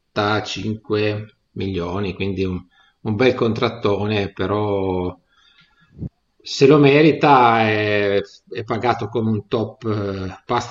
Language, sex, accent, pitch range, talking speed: Italian, male, native, 100-120 Hz, 105 wpm